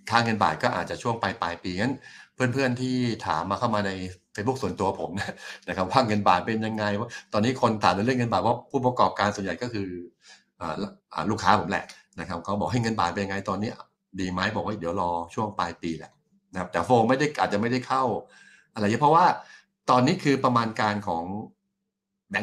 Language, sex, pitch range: Thai, male, 95-125 Hz